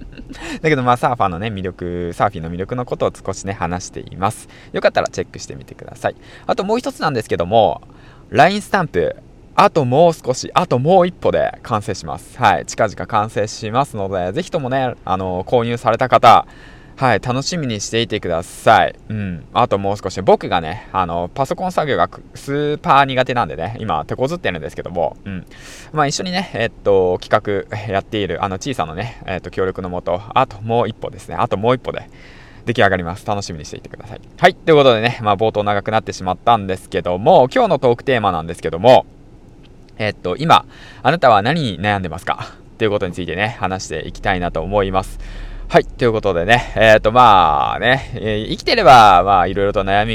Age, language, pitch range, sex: 20-39, Japanese, 95-130 Hz, male